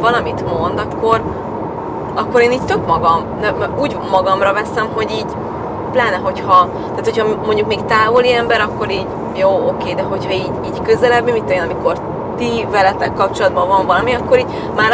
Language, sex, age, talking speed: Hungarian, female, 30-49, 170 wpm